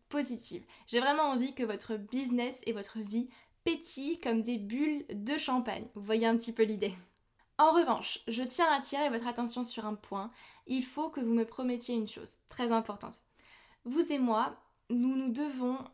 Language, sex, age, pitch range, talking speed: French, female, 20-39, 225-275 Hz, 180 wpm